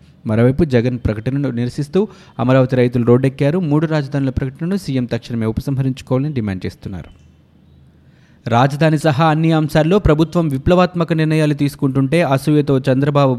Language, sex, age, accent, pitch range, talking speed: Telugu, male, 20-39, native, 120-155 Hz, 110 wpm